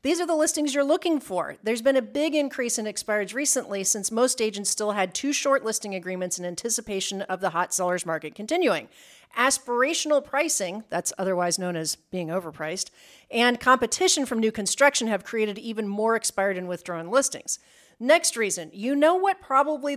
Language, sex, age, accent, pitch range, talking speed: English, female, 40-59, American, 195-280 Hz, 175 wpm